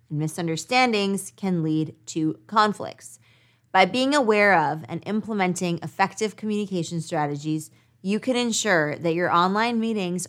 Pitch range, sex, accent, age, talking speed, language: 155-200 Hz, female, American, 20-39, 120 wpm, English